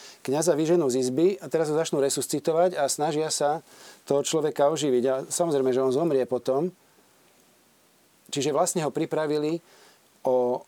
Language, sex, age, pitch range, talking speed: Slovak, male, 40-59, 130-160 Hz, 145 wpm